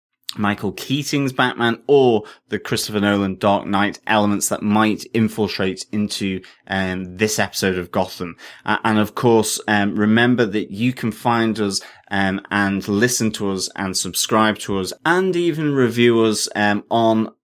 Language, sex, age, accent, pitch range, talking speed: English, male, 20-39, British, 95-115 Hz, 155 wpm